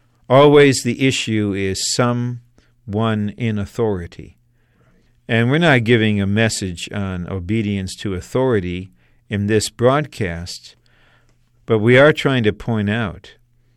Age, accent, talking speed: 50-69, American, 120 wpm